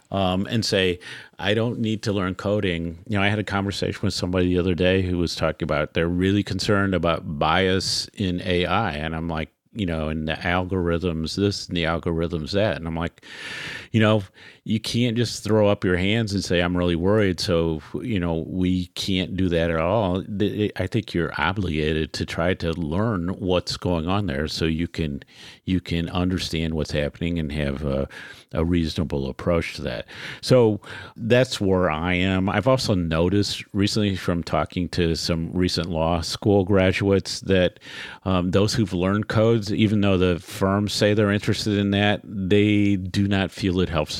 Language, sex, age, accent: English, male, 50-69, American